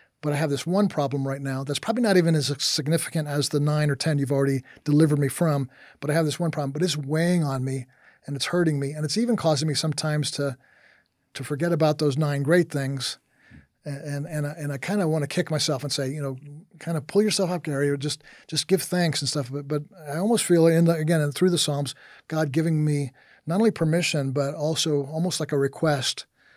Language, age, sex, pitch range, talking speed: English, 50-69, male, 140-160 Hz, 235 wpm